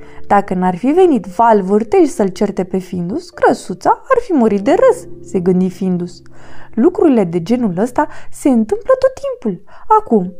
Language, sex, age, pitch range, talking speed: Romanian, female, 20-39, 205-335 Hz, 160 wpm